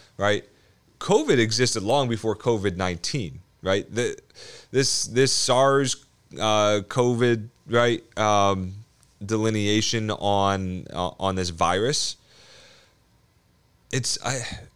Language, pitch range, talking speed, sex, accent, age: English, 95-130 Hz, 90 wpm, male, American, 30-49